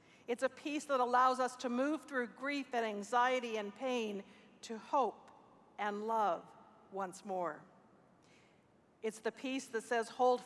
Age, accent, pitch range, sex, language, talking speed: 50-69, American, 210-250 Hz, female, English, 150 wpm